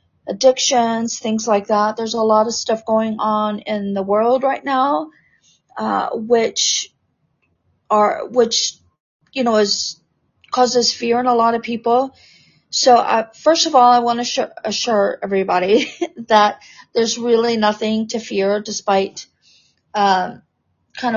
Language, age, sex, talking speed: English, 40-59, female, 140 wpm